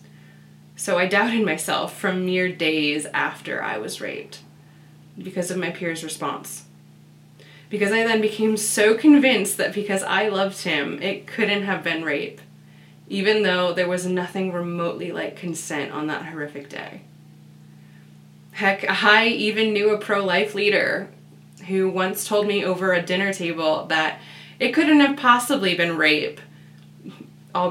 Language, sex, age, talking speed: English, female, 20-39, 145 wpm